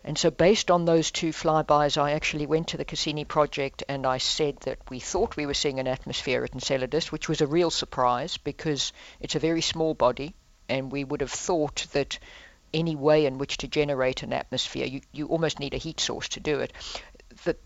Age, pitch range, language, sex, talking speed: 50-69, 140-155 Hz, English, female, 215 wpm